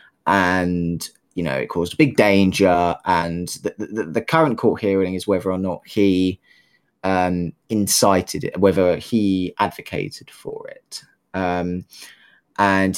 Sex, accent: male, British